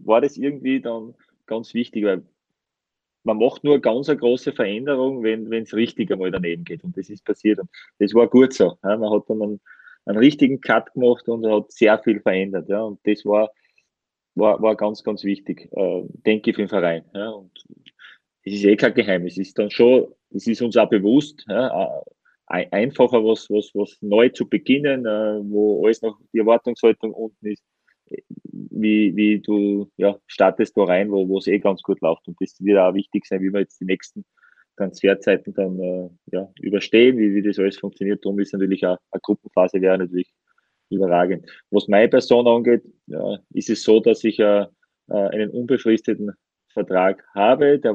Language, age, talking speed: German, 30-49, 185 wpm